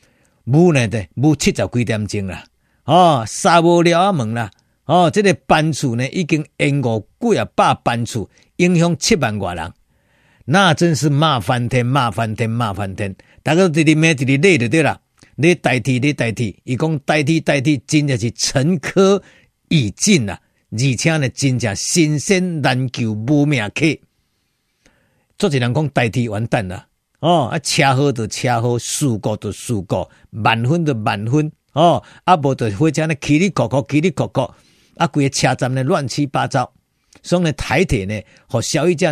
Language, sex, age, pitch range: Chinese, male, 50-69, 115-160 Hz